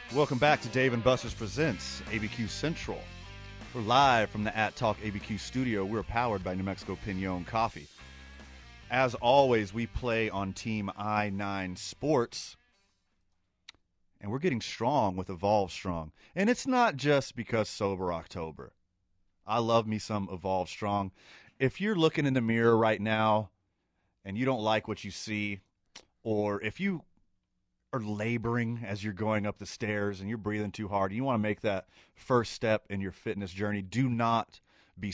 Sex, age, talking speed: male, 30-49, 165 wpm